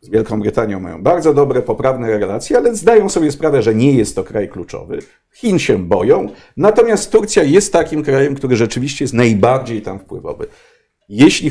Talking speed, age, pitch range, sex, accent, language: 170 wpm, 50-69, 125-170 Hz, male, native, Polish